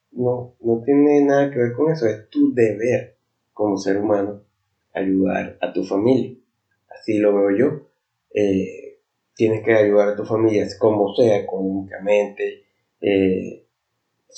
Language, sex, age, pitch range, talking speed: Spanish, male, 30-49, 100-120 Hz, 140 wpm